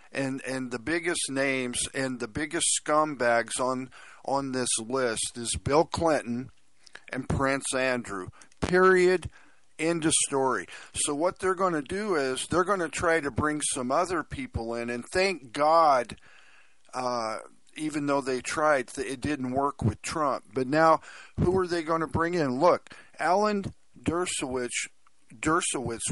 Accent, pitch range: American, 125-150 Hz